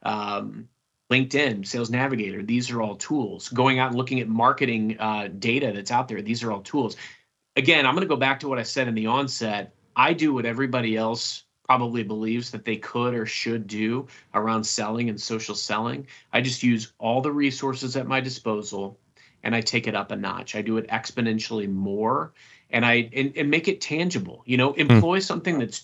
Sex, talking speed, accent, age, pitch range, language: male, 200 wpm, American, 30-49, 115-135 Hz, English